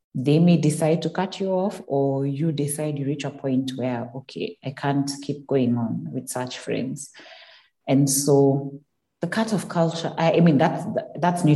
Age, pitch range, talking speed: 30-49, 135-165 Hz, 185 wpm